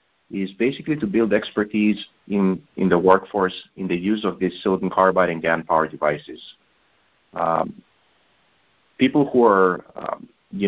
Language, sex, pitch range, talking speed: English, male, 85-105 Hz, 145 wpm